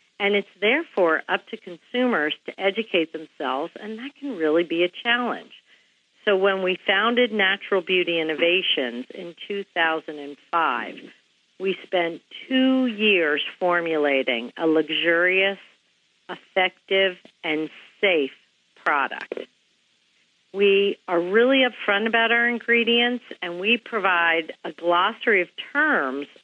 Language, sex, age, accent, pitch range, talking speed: English, female, 50-69, American, 165-215 Hz, 115 wpm